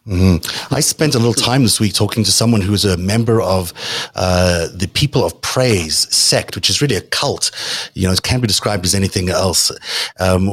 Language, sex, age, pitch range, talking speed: English, male, 30-49, 95-115 Hz, 210 wpm